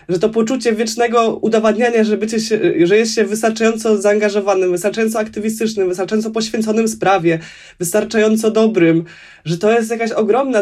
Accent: native